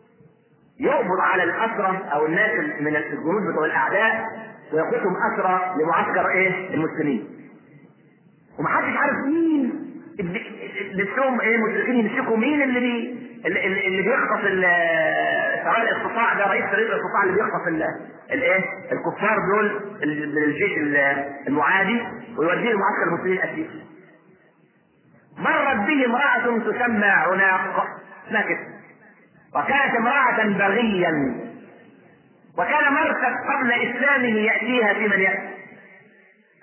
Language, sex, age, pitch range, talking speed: Arabic, male, 40-59, 190-250 Hz, 100 wpm